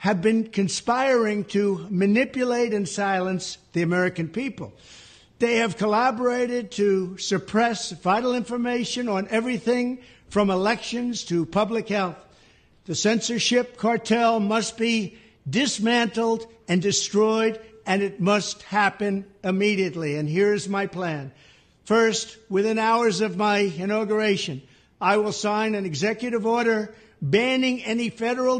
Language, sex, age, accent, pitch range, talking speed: English, male, 60-79, American, 195-230 Hz, 120 wpm